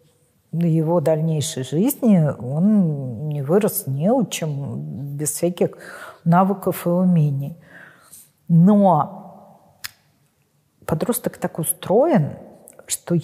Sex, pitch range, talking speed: female, 160-195 Hz, 90 wpm